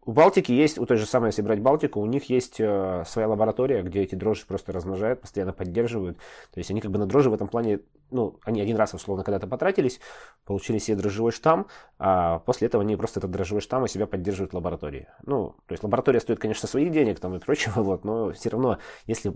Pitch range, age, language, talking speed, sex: 90-110 Hz, 20-39, Russian, 225 wpm, male